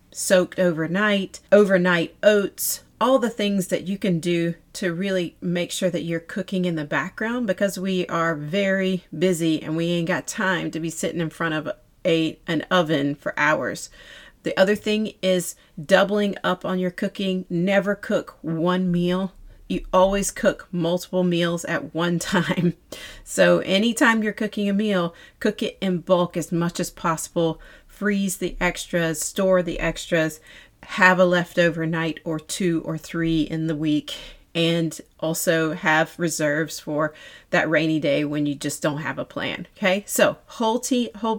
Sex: female